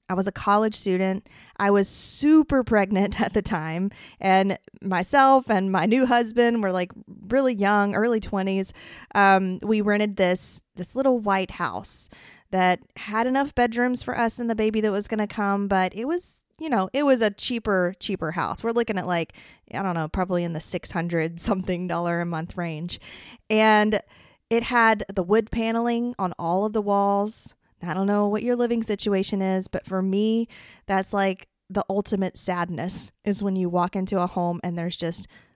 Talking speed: 185 wpm